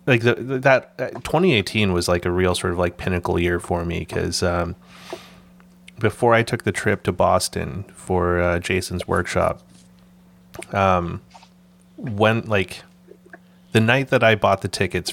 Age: 30-49